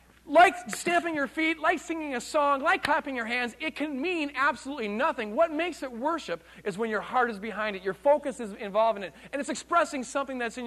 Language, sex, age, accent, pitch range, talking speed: English, male, 40-59, American, 165-240 Hz, 225 wpm